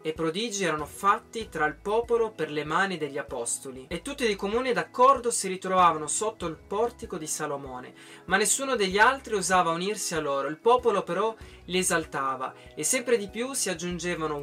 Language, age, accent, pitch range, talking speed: Italian, 20-39, native, 155-220 Hz, 180 wpm